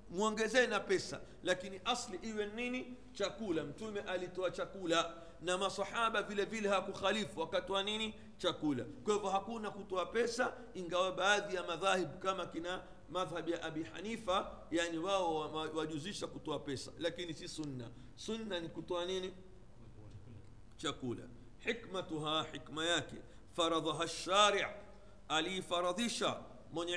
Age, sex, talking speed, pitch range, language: 50-69, male, 110 wpm, 160-200 Hz, Swahili